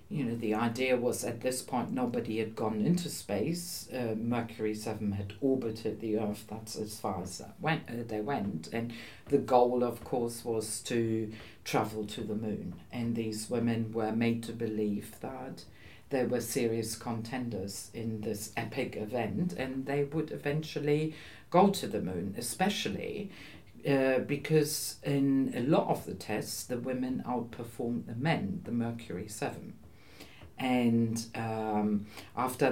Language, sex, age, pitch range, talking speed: English, female, 50-69, 110-140 Hz, 155 wpm